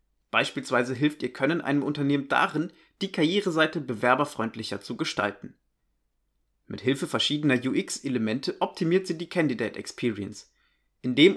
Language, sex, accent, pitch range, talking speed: German, male, German, 125-170 Hz, 115 wpm